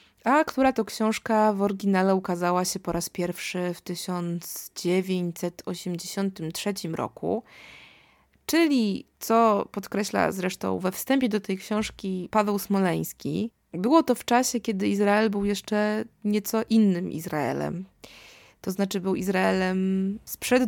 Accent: native